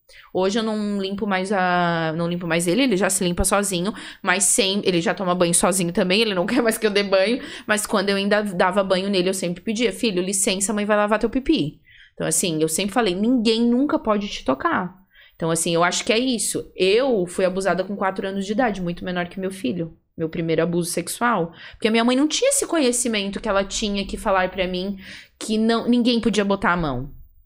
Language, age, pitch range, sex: Portuguese, 20-39, 180-230 Hz, female